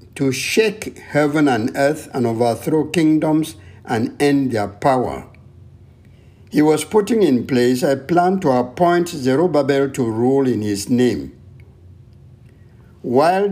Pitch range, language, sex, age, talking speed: 110-145 Hz, English, male, 60-79, 125 wpm